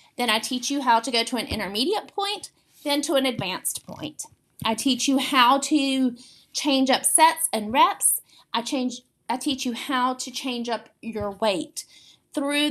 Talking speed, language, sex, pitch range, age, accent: 180 wpm, English, female, 240-300 Hz, 30-49, American